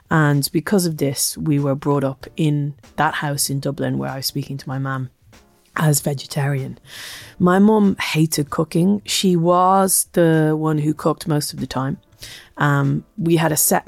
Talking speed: 175 wpm